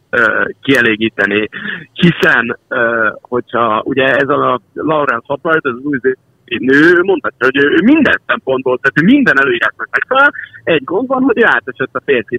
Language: Hungarian